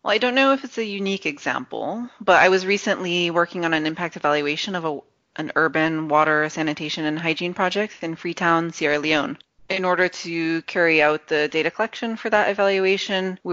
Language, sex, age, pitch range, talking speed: English, female, 30-49, 155-190 Hz, 185 wpm